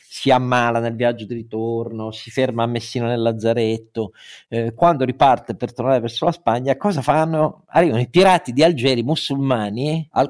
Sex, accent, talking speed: male, native, 165 wpm